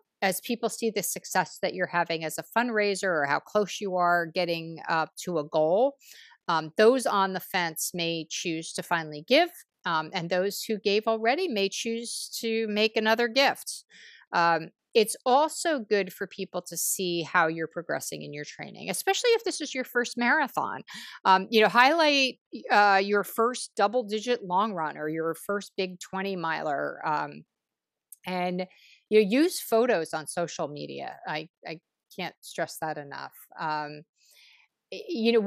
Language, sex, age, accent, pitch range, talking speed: English, female, 50-69, American, 175-225 Hz, 165 wpm